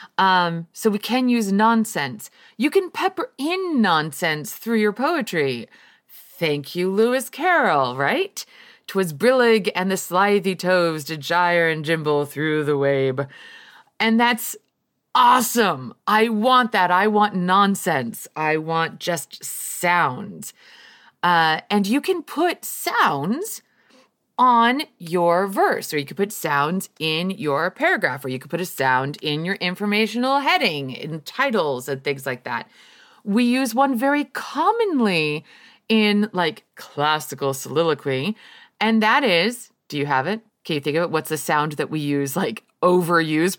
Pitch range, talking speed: 155-225 Hz, 145 wpm